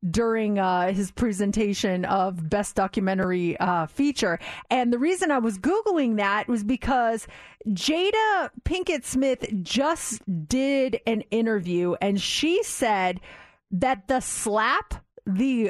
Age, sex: 30-49, female